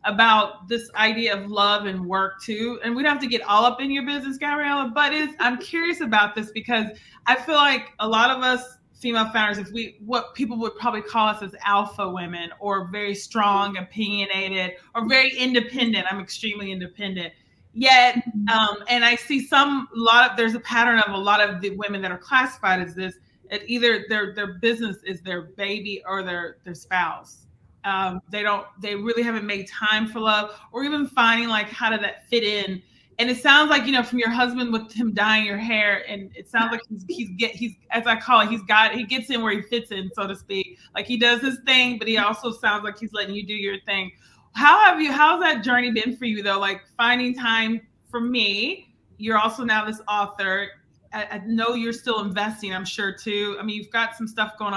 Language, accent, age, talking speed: English, American, 30-49, 220 wpm